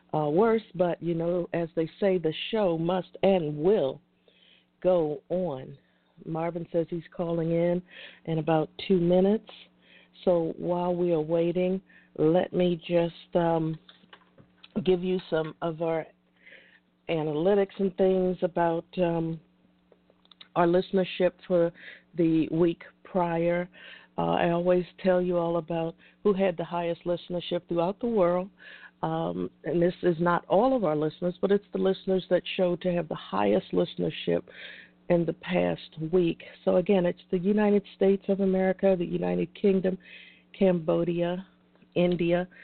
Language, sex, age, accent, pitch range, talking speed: English, female, 50-69, American, 165-185 Hz, 140 wpm